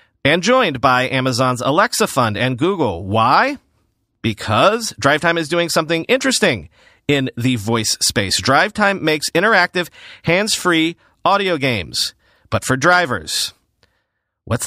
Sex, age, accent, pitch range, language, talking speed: male, 40-59, American, 130-175 Hz, English, 120 wpm